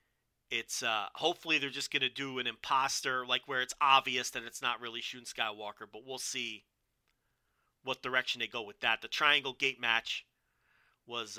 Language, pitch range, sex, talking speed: English, 110-130 Hz, male, 180 wpm